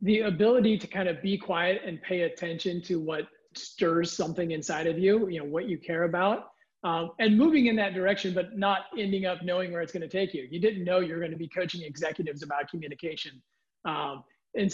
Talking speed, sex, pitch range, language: 210 wpm, male, 170-200 Hz, English